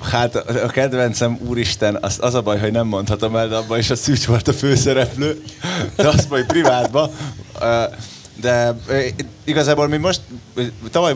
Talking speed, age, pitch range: 145 wpm, 20-39, 110-125 Hz